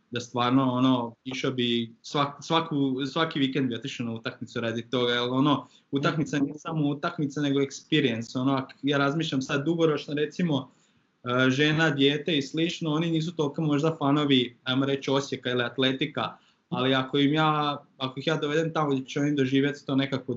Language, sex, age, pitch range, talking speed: Croatian, male, 20-39, 130-155 Hz, 160 wpm